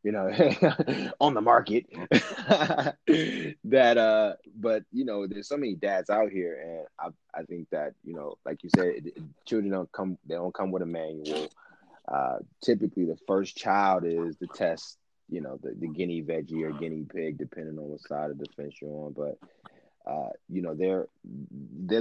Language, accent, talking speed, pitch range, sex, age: English, American, 185 wpm, 90-125 Hz, male, 20-39